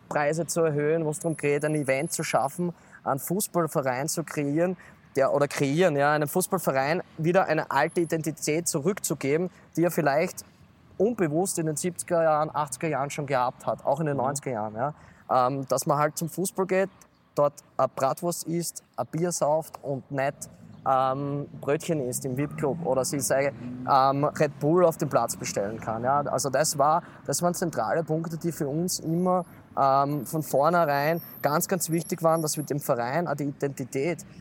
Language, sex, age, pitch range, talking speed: German, male, 20-39, 130-165 Hz, 175 wpm